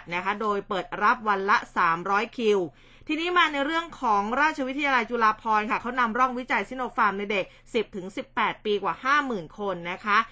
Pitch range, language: 200-255 Hz, Thai